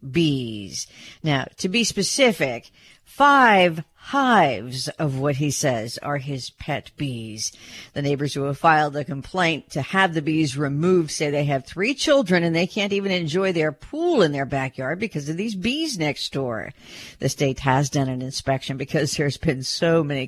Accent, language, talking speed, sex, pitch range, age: American, English, 175 wpm, female, 140-220 Hz, 50-69